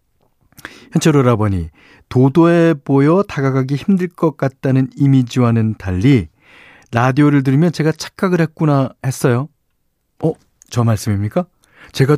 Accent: native